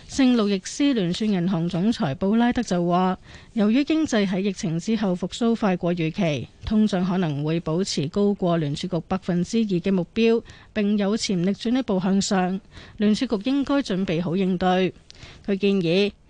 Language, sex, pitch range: Chinese, female, 180-225 Hz